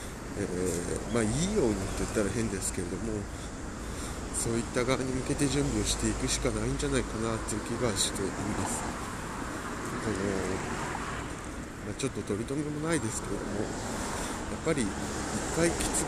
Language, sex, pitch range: Japanese, male, 95-125 Hz